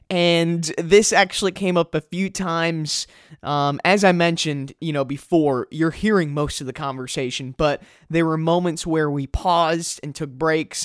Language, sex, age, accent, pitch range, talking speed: English, male, 20-39, American, 140-175 Hz, 170 wpm